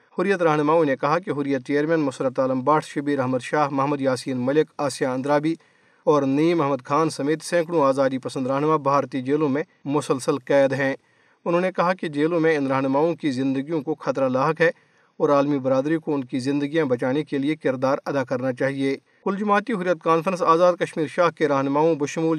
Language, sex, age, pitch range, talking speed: Urdu, male, 40-59, 135-160 Hz, 190 wpm